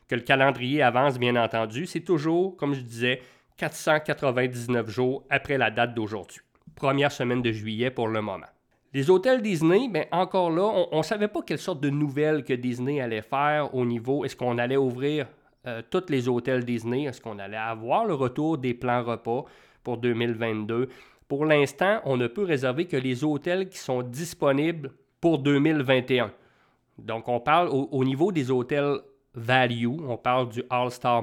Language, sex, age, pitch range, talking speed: English, male, 30-49, 120-145 Hz, 175 wpm